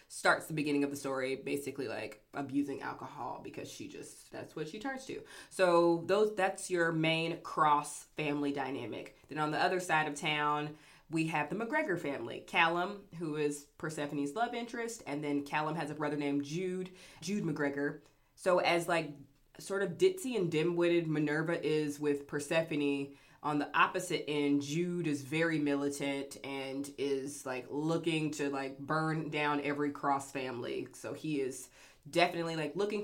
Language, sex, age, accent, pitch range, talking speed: English, female, 20-39, American, 140-170 Hz, 165 wpm